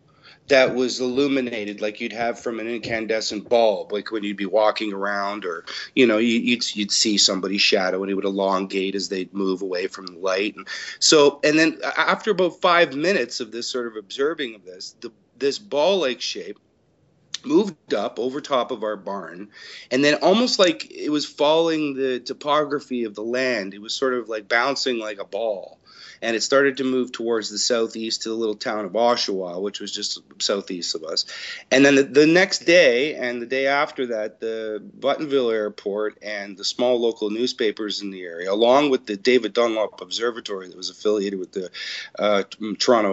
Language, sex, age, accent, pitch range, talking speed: English, male, 30-49, American, 105-135 Hz, 190 wpm